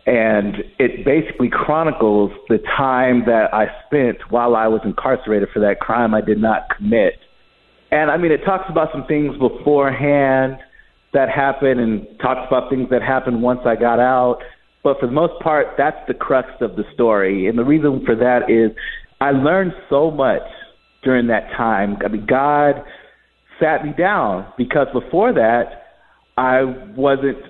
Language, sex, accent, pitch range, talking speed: English, male, American, 120-145 Hz, 165 wpm